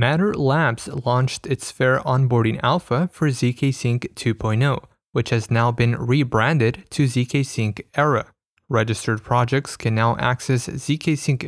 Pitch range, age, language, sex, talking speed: 115-145 Hz, 20-39, English, male, 140 wpm